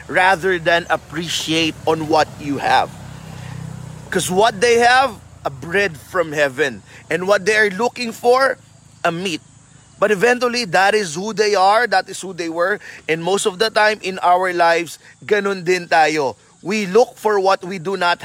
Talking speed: 175 wpm